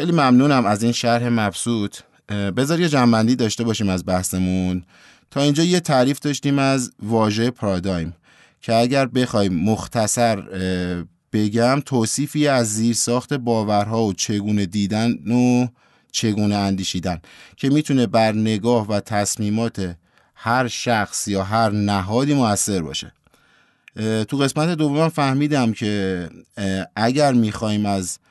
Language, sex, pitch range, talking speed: Persian, male, 100-125 Hz, 125 wpm